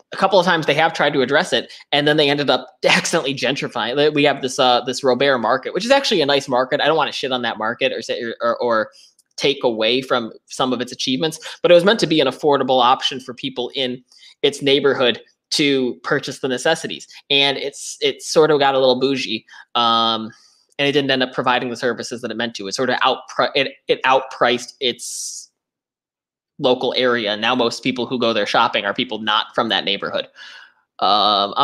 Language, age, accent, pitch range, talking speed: English, 20-39, American, 125-165 Hz, 215 wpm